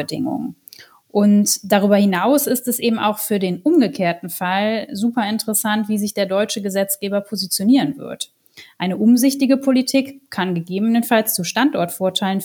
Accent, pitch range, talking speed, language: German, 190-220 Hz, 130 wpm, German